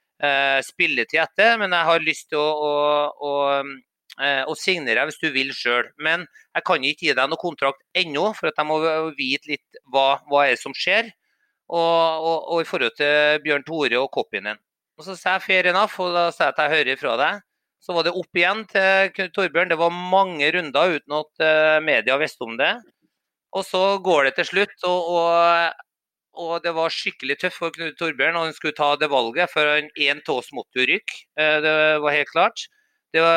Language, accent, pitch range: English, Swedish, 150-180 Hz